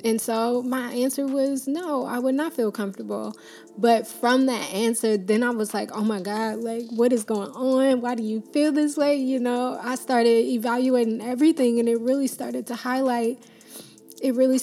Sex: female